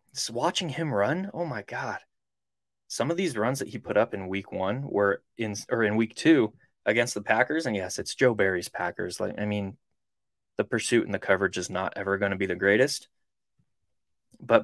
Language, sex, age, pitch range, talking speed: English, male, 20-39, 95-125 Hz, 200 wpm